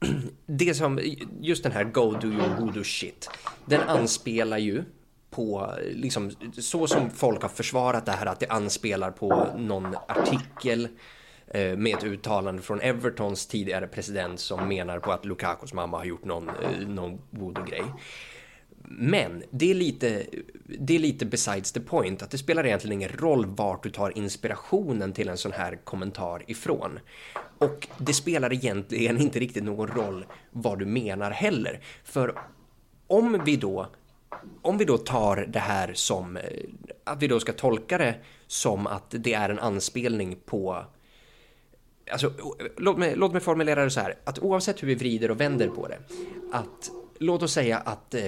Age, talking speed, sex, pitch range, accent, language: 20-39, 165 wpm, male, 100-135 Hz, native, Swedish